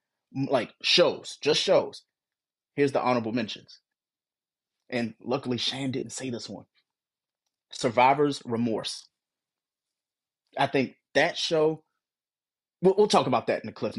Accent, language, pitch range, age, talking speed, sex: American, English, 120-160 Hz, 30-49, 125 wpm, male